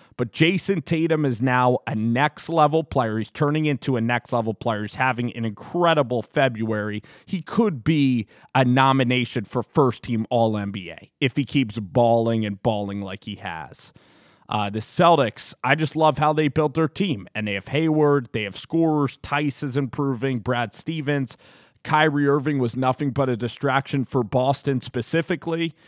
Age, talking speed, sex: 20-39, 160 wpm, male